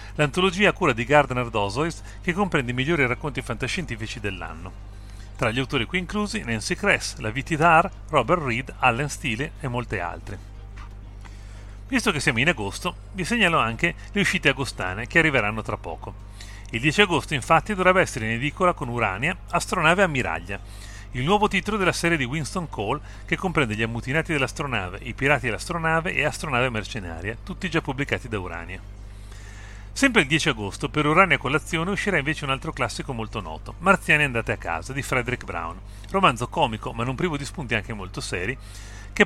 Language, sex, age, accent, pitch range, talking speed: Italian, male, 40-59, native, 100-160 Hz, 175 wpm